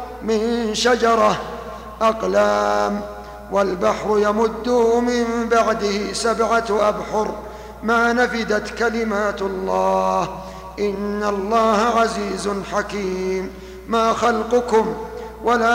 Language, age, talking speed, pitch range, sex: Arabic, 50-69, 75 wpm, 190-225 Hz, male